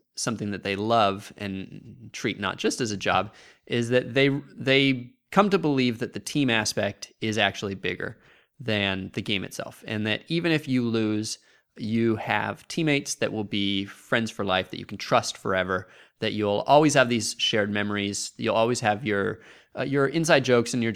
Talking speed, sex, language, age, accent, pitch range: 190 wpm, male, English, 20-39, American, 100-130 Hz